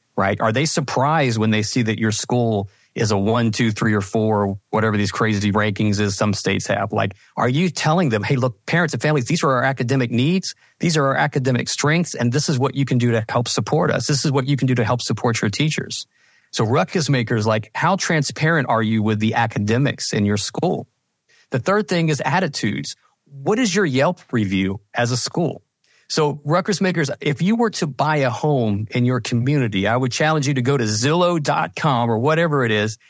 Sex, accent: male, American